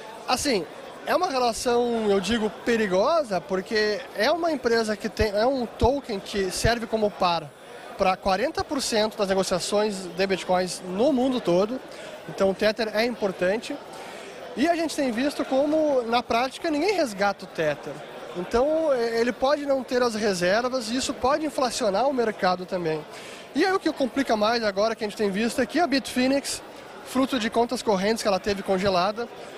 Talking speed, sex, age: 170 wpm, male, 20-39